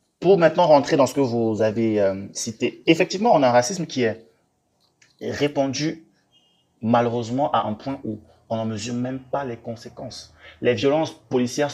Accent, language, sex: French, French, male